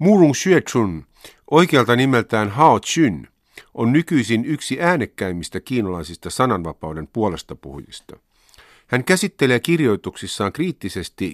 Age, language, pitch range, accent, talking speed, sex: 50-69, Finnish, 90-135 Hz, native, 95 wpm, male